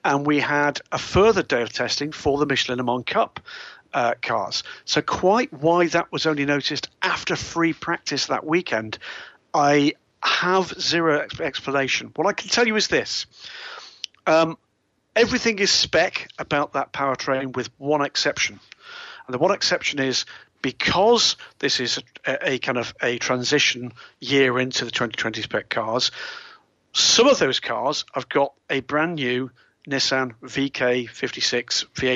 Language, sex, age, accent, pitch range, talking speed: English, male, 50-69, British, 125-150 Hz, 150 wpm